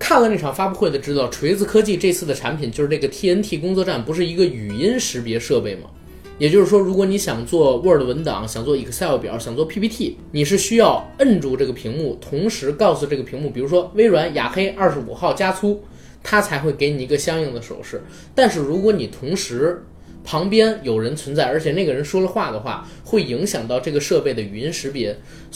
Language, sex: Chinese, male